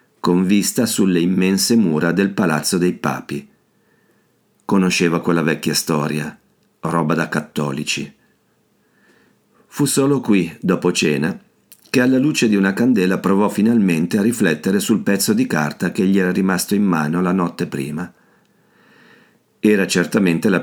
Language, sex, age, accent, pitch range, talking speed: Italian, male, 50-69, native, 85-110 Hz, 135 wpm